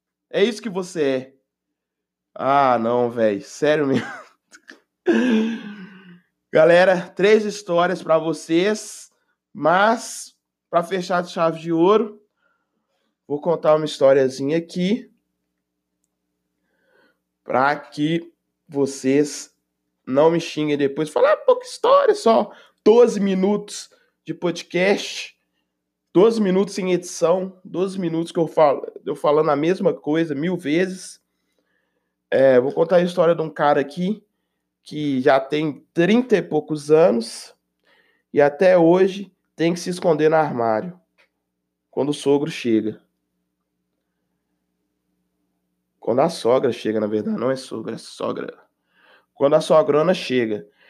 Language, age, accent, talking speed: Portuguese, 20-39, Brazilian, 120 wpm